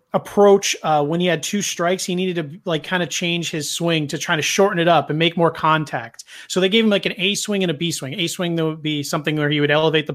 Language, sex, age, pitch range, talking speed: English, male, 30-49, 145-180 Hz, 290 wpm